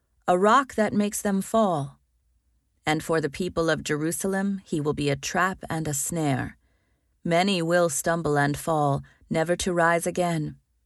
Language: English